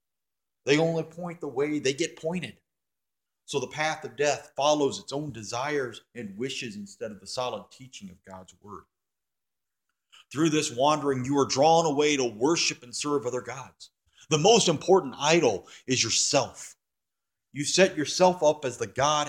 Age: 40-59